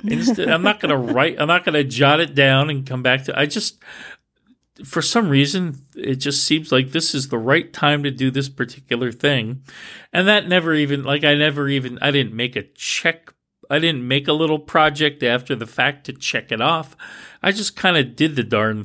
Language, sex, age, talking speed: English, male, 40-59, 215 wpm